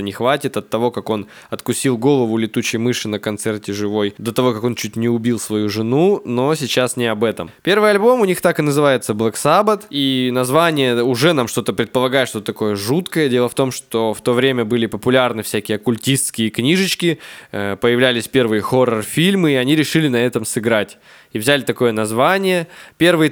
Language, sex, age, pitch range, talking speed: Russian, male, 20-39, 115-150 Hz, 185 wpm